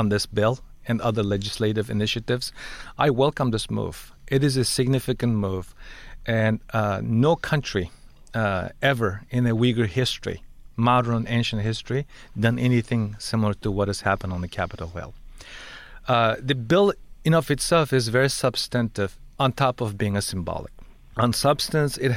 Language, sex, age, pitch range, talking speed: English, male, 40-59, 105-135 Hz, 155 wpm